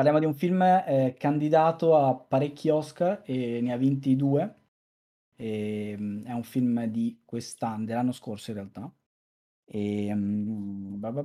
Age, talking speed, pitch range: 20-39, 145 wpm, 115-150 Hz